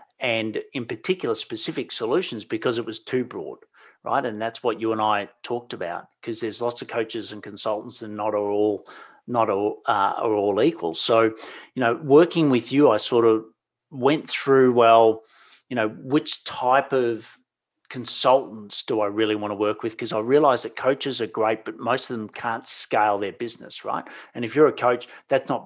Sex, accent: male, Australian